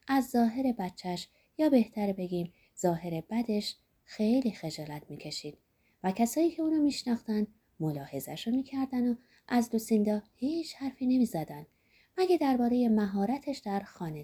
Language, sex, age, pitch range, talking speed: Persian, female, 30-49, 180-255 Hz, 125 wpm